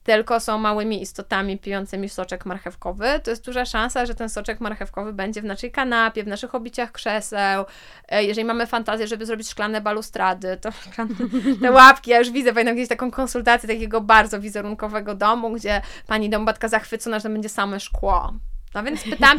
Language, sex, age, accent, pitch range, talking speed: Polish, female, 20-39, native, 205-240 Hz, 170 wpm